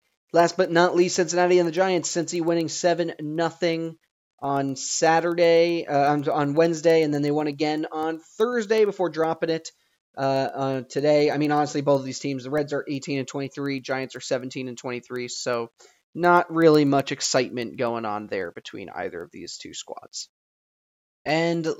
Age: 30-49